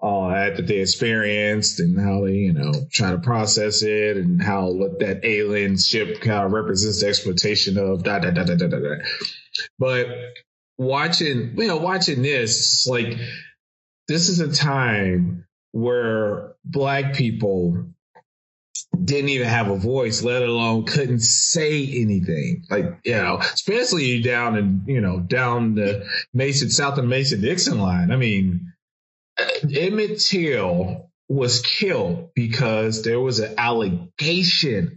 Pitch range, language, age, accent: 105-145 Hz, English, 30-49, American